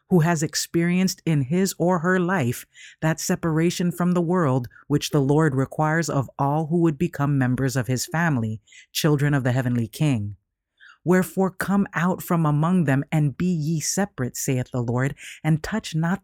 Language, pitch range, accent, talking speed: English, 135-180 Hz, American, 175 wpm